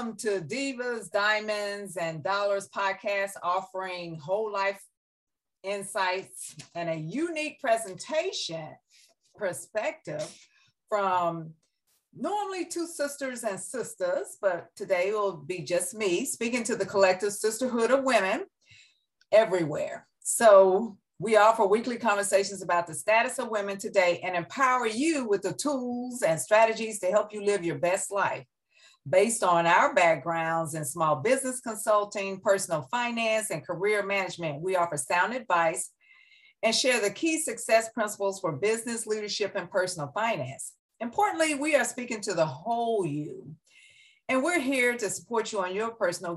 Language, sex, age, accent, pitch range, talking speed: English, female, 50-69, American, 175-245 Hz, 140 wpm